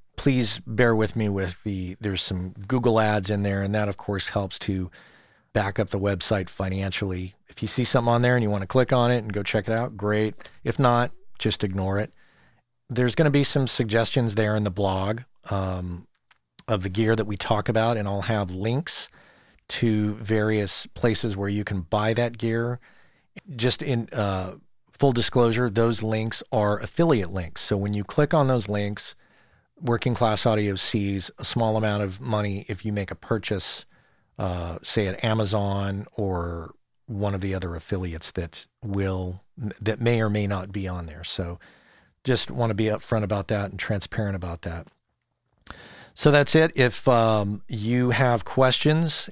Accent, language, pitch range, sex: American, English, 100-120 Hz, male